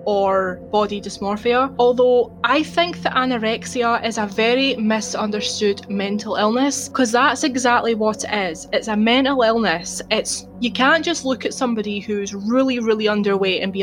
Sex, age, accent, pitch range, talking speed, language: female, 20-39, British, 210-250 Hz, 160 wpm, English